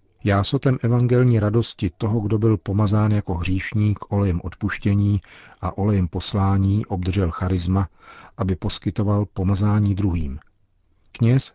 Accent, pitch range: native, 90-105 Hz